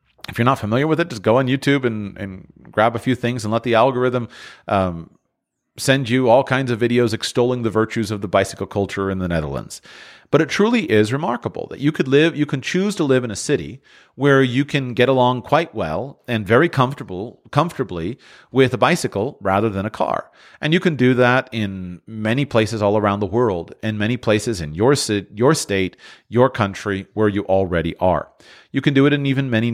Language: English